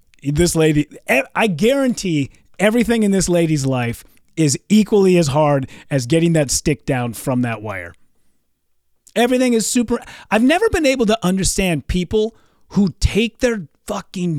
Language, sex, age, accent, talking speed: English, male, 30-49, American, 145 wpm